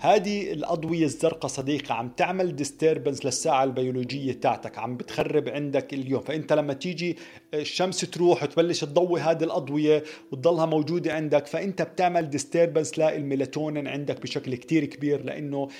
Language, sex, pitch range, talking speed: Arabic, male, 135-170 Hz, 135 wpm